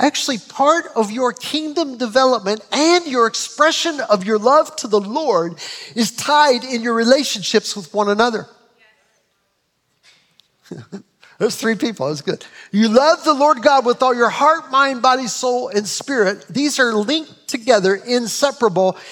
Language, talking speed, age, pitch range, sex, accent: English, 150 wpm, 50-69, 180-250 Hz, male, American